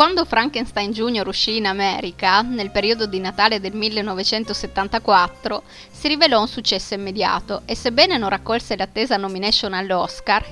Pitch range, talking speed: 200-245 Hz, 135 wpm